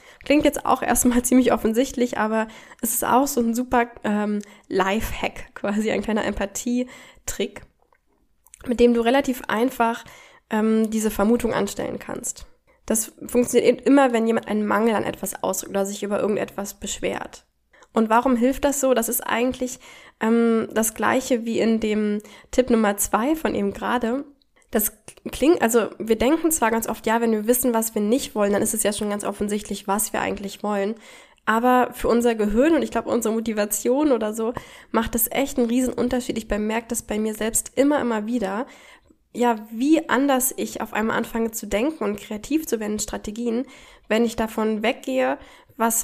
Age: 10-29